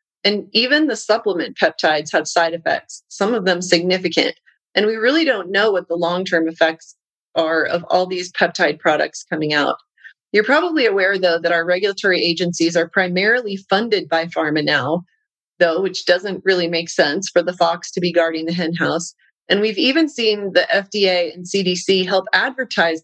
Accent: American